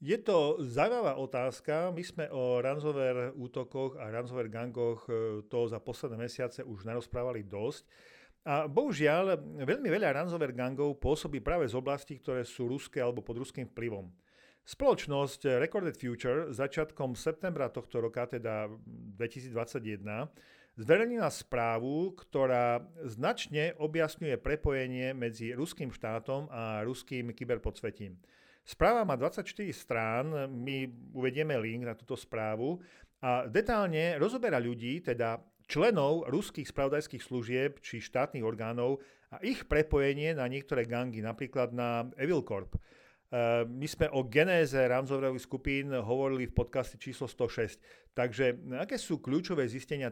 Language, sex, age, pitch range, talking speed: Slovak, male, 50-69, 120-145 Hz, 125 wpm